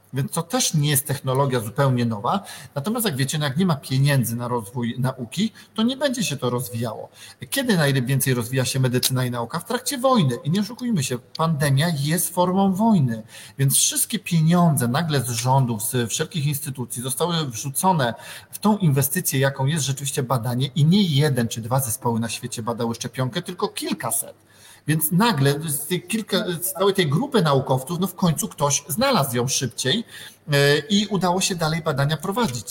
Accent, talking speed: native, 170 wpm